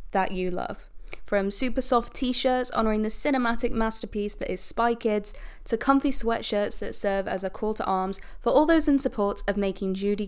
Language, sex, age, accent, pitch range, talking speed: English, female, 10-29, British, 200-245 Hz, 195 wpm